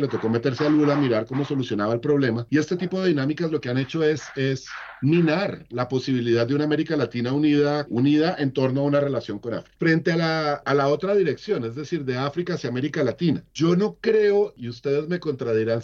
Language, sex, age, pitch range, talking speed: Spanish, male, 40-59, 125-150 Hz, 220 wpm